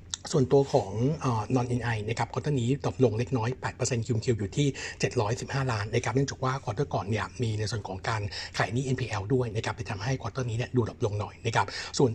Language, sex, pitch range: Thai, male, 110-135 Hz